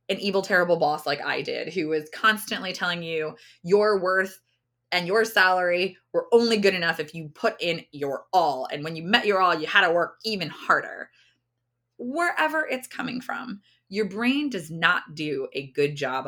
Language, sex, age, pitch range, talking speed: English, female, 20-39, 150-225 Hz, 190 wpm